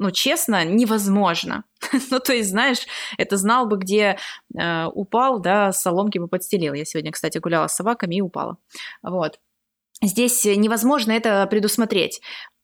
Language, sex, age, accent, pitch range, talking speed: Russian, female, 20-39, native, 185-235 Hz, 140 wpm